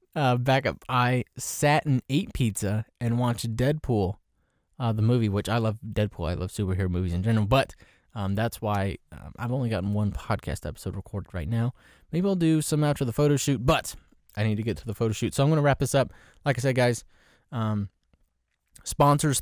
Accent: American